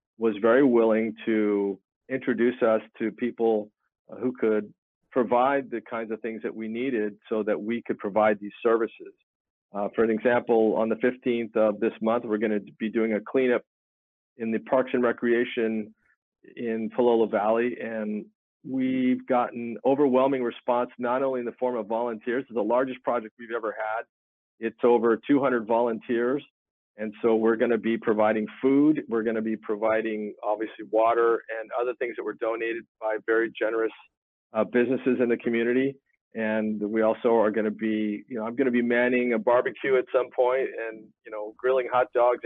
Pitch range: 110-125 Hz